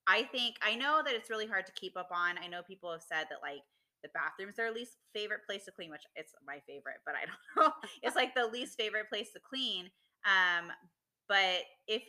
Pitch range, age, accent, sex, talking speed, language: 160-220 Hz, 20-39, American, female, 230 wpm, English